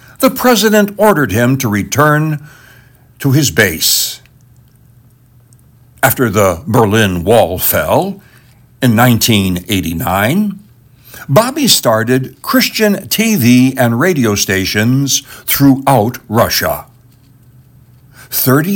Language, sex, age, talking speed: English, male, 60-79, 85 wpm